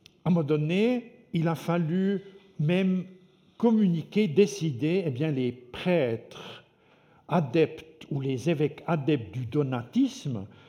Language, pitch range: French, 130-185 Hz